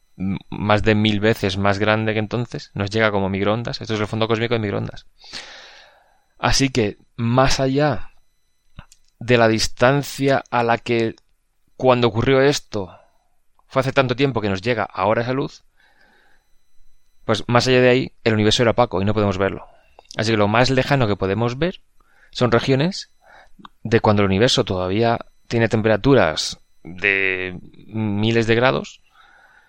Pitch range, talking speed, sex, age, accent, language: 100-125 Hz, 155 wpm, male, 20-39, Spanish, Spanish